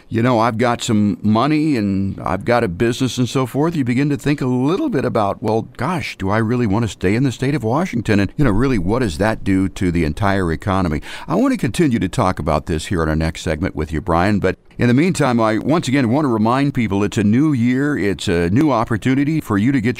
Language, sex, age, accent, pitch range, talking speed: English, male, 50-69, American, 95-130 Hz, 260 wpm